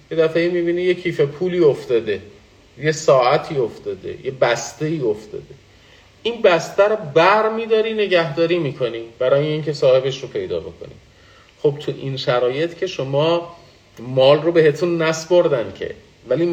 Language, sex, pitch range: Persian, male, 115-170 Hz